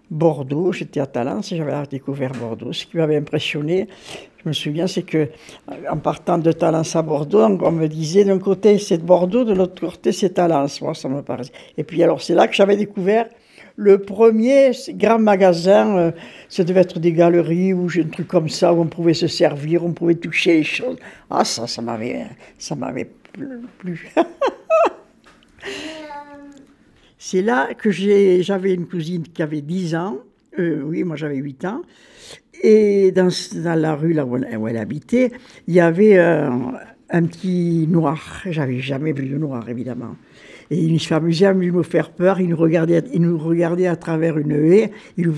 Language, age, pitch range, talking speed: French, 60-79, 155-200 Hz, 190 wpm